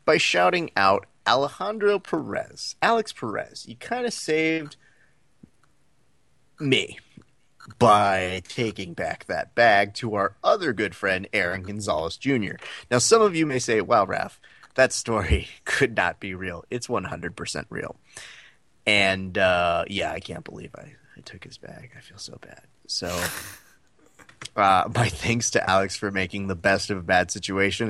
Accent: American